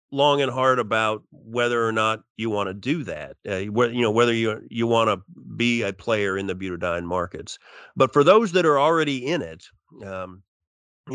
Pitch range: 100-120 Hz